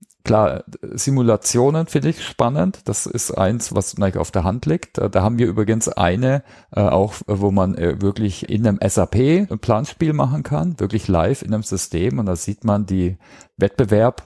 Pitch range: 95-115 Hz